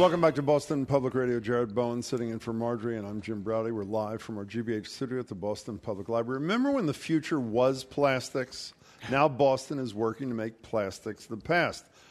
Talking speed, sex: 210 wpm, male